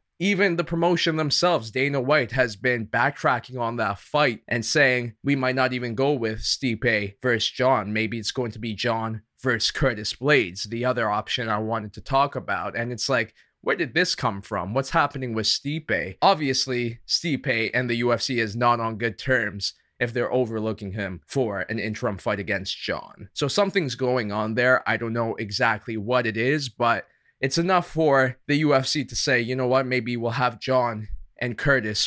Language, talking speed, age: English, 190 wpm, 20-39